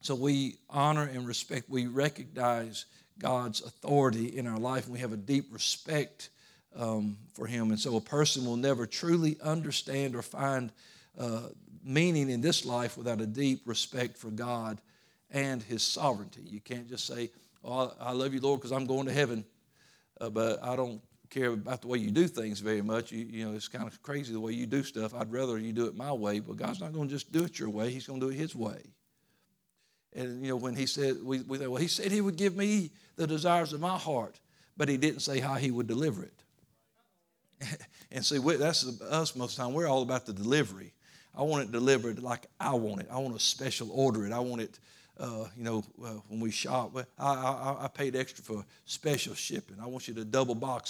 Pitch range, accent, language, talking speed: 115-140 Hz, American, English, 225 wpm